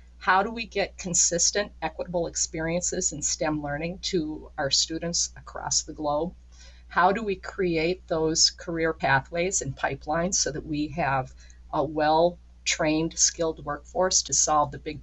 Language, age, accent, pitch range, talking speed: English, 50-69, American, 135-180 Hz, 150 wpm